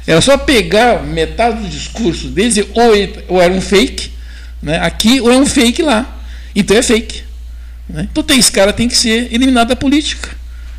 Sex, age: male, 60-79